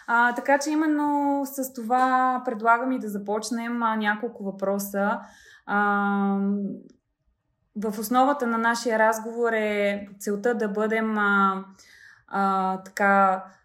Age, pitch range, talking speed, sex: 20-39, 205-235 Hz, 110 wpm, female